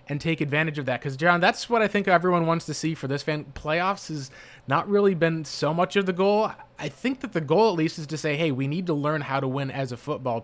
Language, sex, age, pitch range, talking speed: English, male, 20-39, 135-170 Hz, 280 wpm